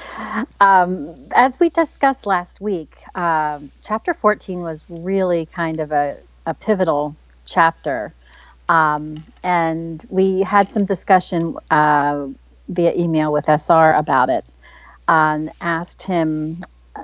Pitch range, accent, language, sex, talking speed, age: 150-185 Hz, American, English, female, 115 wpm, 40-59